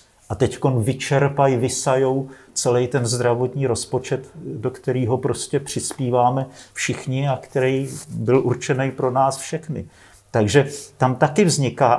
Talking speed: 120 wpm